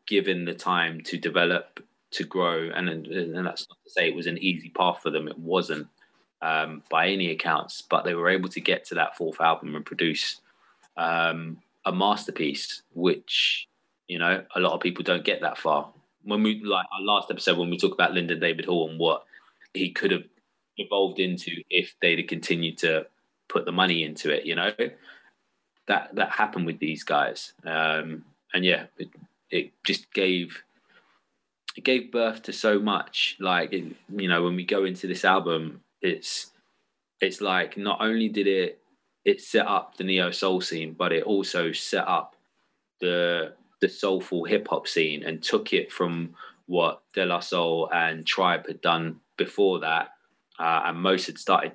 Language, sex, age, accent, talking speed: English, male, 20-39, British, 180 wpm